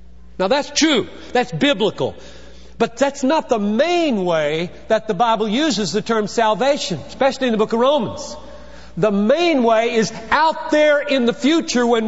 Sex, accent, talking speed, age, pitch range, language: male, American, 170 wpm, 40-59, 175-260 Hz, English